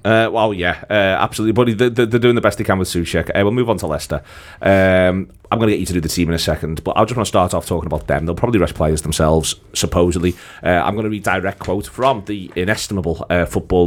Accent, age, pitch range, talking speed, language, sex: British, 30-49, 80-95 Hz, 265 wpm, English, male